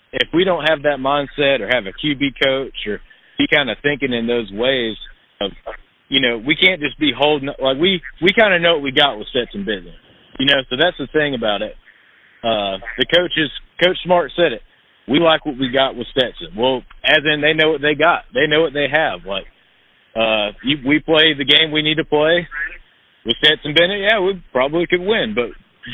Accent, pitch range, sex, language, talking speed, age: American, 120-155 Hz, male, English, 220 wpm, 30-49